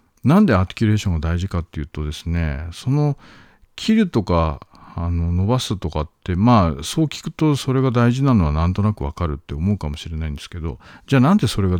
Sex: male